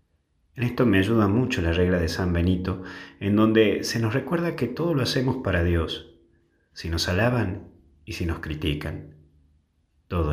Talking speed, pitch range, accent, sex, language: 170 wpm, 80-115 Hz, Argentinian, male, Spanish